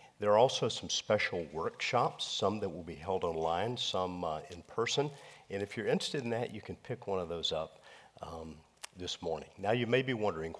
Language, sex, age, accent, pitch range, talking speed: English, male, 50-69, American, 95-115 Hz, 210 wpm